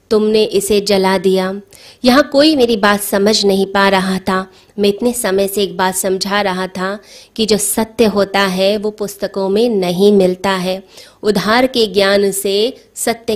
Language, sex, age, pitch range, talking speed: Hindi, female, 20-39, 195-225 Hz, 170 wpm